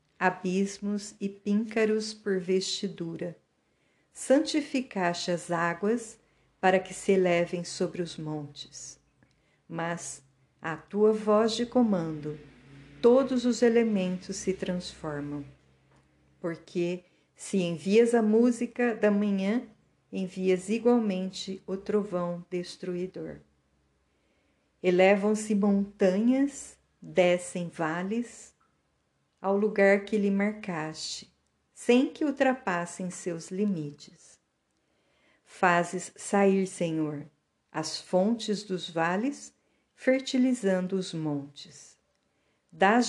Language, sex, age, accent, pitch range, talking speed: Portuguese, female, 50-69, Brazilian, 170-215 Hz, 90 wpm